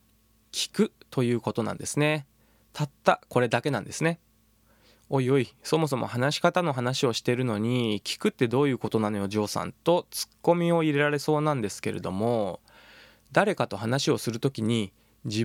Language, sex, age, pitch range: Japanese, male, 20-39, 115-155 Hz